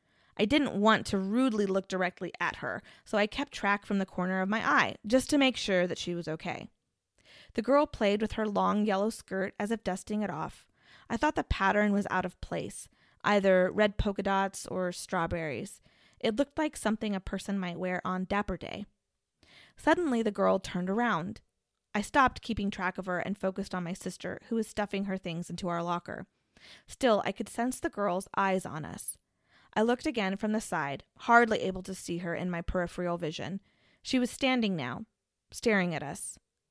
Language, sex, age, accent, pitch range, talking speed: English, female, 20-39, American, 185-230 Hz, 195 wpm